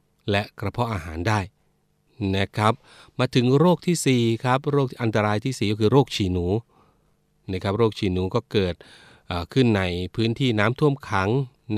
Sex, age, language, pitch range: male, 30-49, Thai, 95-120 Hz